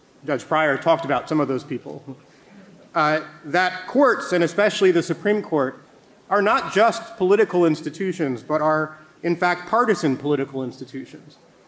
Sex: male